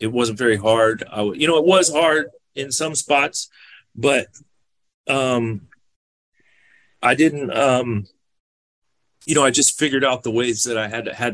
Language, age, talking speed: English, 30-49, 165 wpm